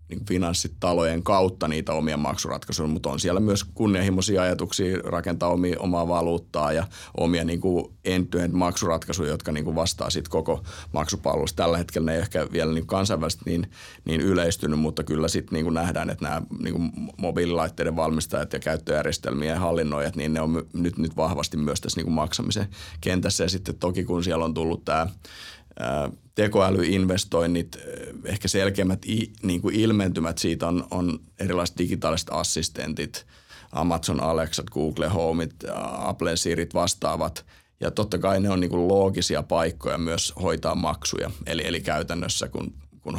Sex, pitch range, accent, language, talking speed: male, 80-95 Hz, native, Finnish, 140 wpm